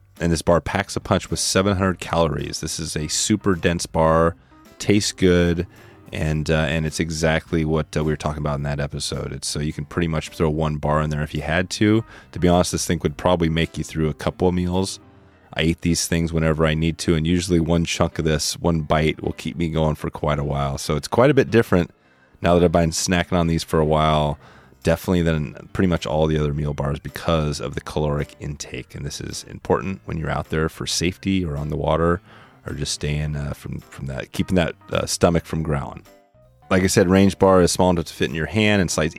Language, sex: English, male